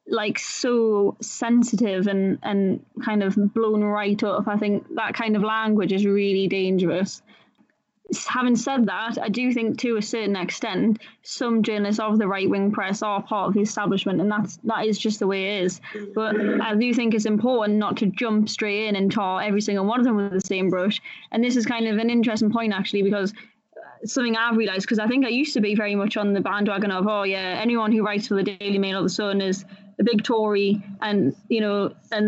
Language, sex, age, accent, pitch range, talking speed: English, female, 20-39, British, 200-225 Hz, 220 wpm